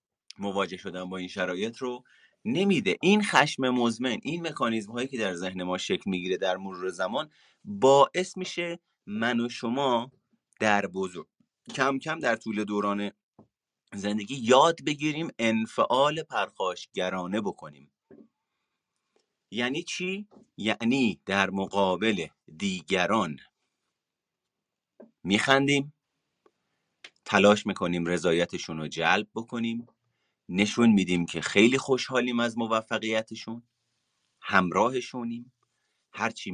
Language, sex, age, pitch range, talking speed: Persian, male, 30-49, 95-130 Hz, 100 wpm